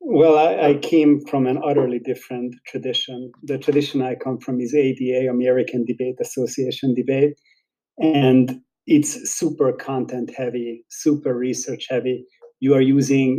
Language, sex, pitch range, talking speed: English, male, 125-140 Hz, 140 wpm